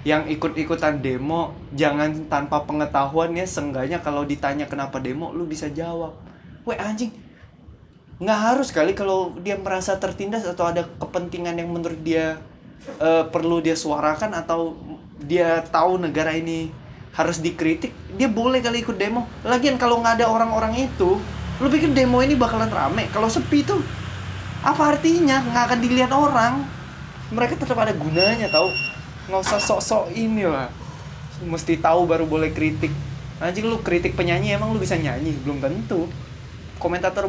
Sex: male